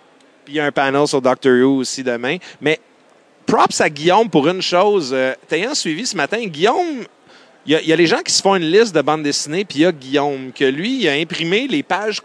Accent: Canadian